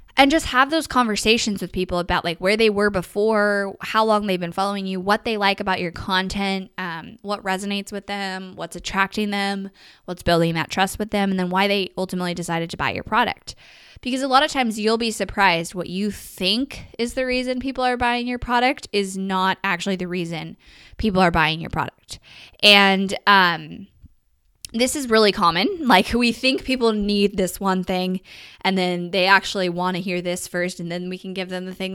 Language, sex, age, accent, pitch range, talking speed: English, female, 10-29, American, 185-225 Hz, 205 wpm